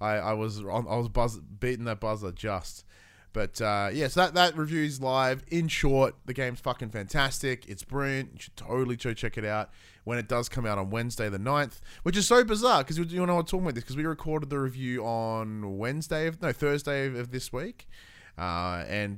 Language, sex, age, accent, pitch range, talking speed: English, male, 20-39, Australian, 100-135 Hz, 220 wpm